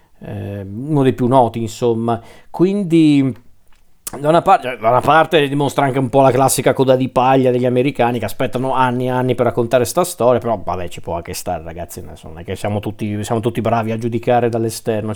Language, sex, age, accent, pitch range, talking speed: Italian, male, 40-59, native, 120-150 Hz, 200 wpm